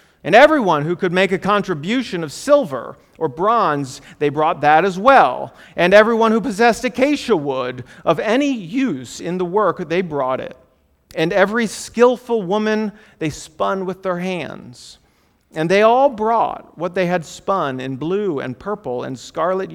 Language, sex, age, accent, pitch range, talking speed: English, male, 40-59, American, 130-185 Hz, 165 wpm